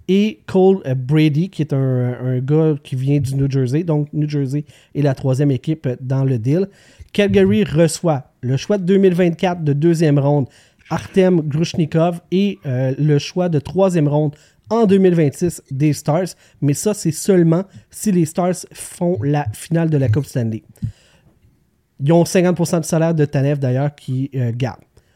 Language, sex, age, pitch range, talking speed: French, male, 30-49, 130-170 Hz, 165 wpm